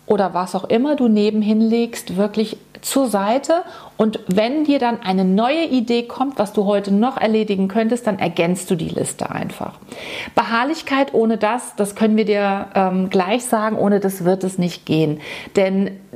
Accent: German